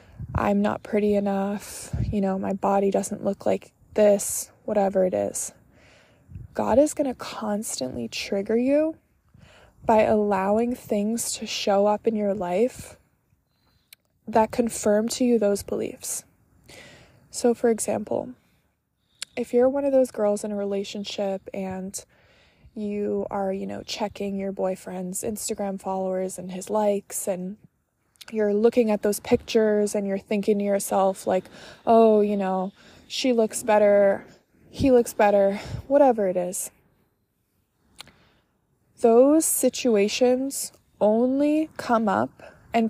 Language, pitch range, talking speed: English, 195-235 Hz, 130 wpm